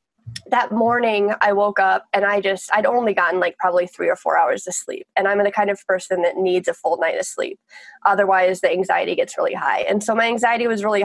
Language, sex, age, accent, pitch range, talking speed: English, female, 20-39, American, 190-235 Hz, 240 wpm